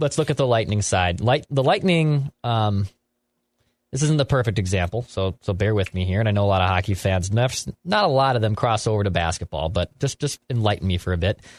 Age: 20-39